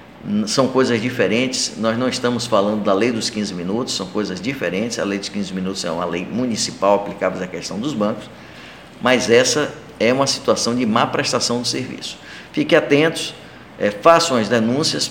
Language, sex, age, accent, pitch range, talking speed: Portuguese, male, 60-79, Brazilian, 105-125 Hz, 180 wpm